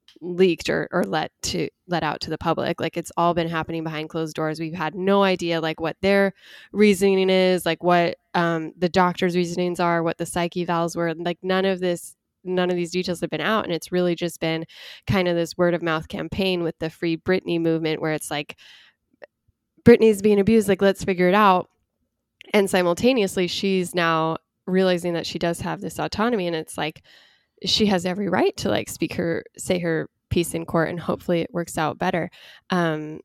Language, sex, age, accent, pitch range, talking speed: English, female, 10-29, American, 160-185 Hz, 200 wpm